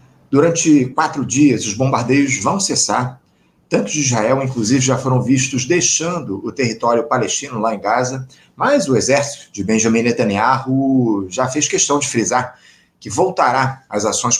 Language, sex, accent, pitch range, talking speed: Portuguese, male, Brazilian, 120-150 Hz, 150 wpm